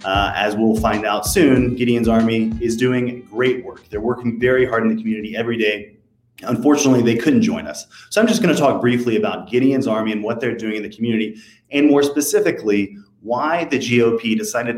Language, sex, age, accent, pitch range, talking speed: English, male, 30-49, American, 110-140 Hz, 205 wpm